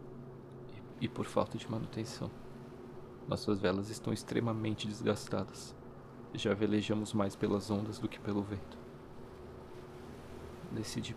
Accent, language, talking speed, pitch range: Brazilian, Portuguese, 105 wpm, 105-130 Hz